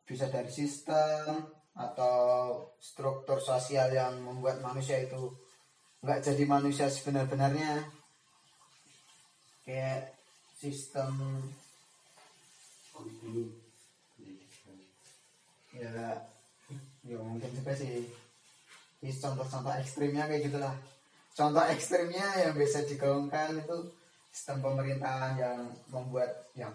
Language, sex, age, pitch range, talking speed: Indonesian, male, 10-29, 130-160 Hz, 80 wpm